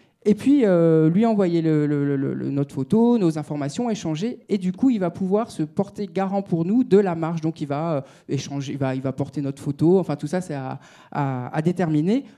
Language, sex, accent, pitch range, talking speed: French, male, French, 150-195 Hz, 235 wpm